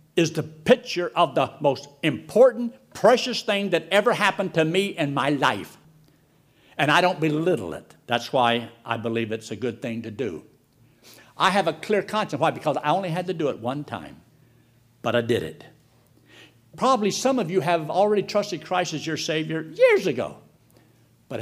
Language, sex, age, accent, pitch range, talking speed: English, male, 60-79, American, 140-195 Hz, 180 wpm